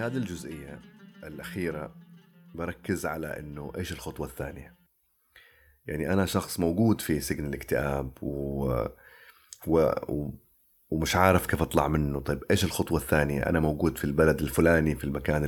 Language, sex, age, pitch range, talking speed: Arabic, male, 30-49, 75-95 Hz, 130 wpm